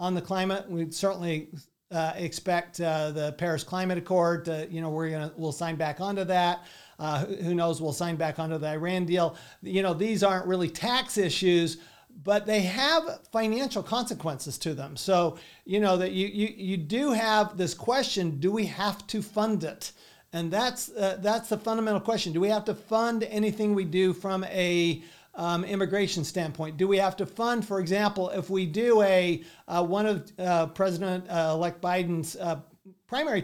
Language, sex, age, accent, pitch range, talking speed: English, male, 50-69, American, 170-200 Hz, 180 wpm